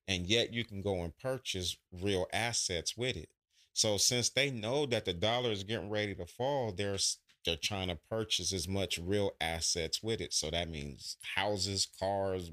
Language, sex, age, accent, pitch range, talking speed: English, male, 30-49, American, 85-105 Hz, 185 wpm